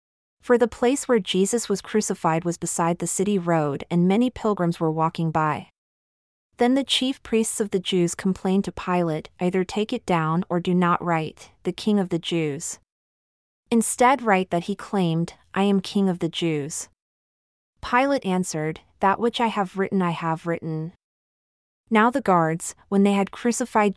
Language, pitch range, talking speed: English, 170-210 Hz, 175 wpm